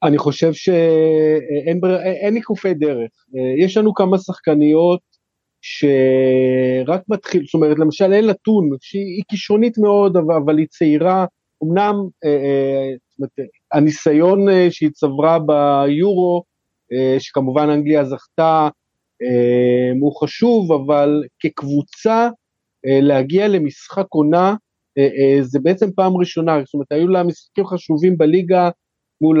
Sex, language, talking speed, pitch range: male, Hebrew, 120 wpm, 145-185 Hz